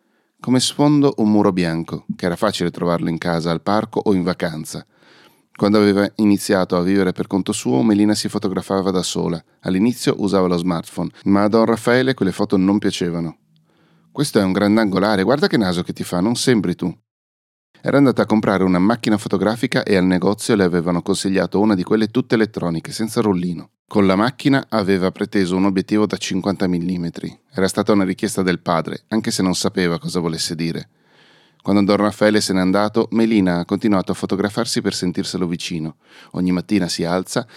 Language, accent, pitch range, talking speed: Italian, native, 90-110 Hz, 185 wpm